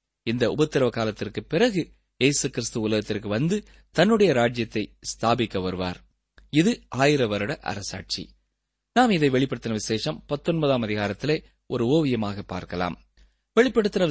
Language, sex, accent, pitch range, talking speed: Tamil, male, native, 105-170 Hz, 100 wpm